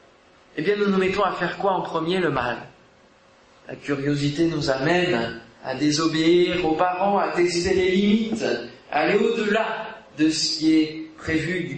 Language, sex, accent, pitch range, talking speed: French, male, French, 150-205 Hz, 170 wpm